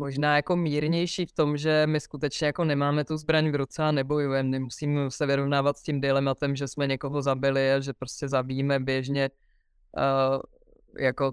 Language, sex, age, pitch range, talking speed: Czech, female, 20-39, 140-160 Hz, 175 wpm